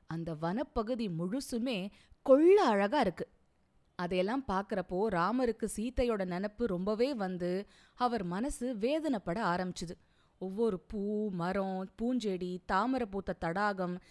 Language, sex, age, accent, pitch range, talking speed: Tamil, female, 20-39, native, 180-250 Hz, 100 wpm